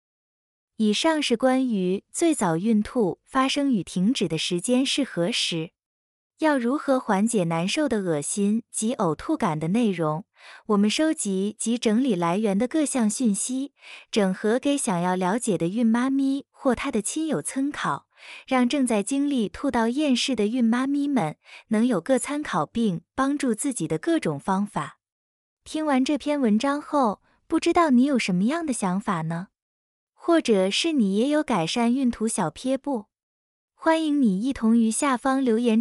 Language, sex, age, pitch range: Chinese, female, 20-39, 195-275 Hz